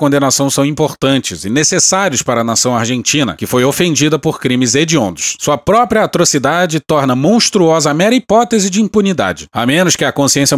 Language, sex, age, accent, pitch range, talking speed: Portuguese, male, 40-59, Brazilian, 120-160 Hz, 170 wpm